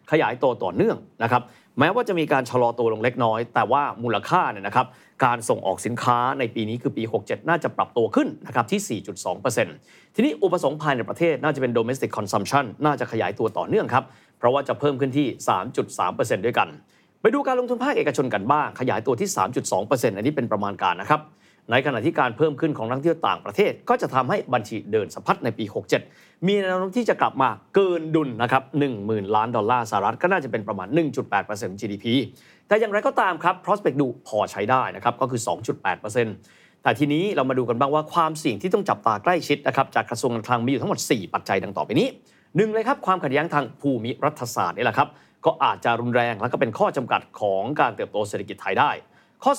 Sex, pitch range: male, 120-170 Hz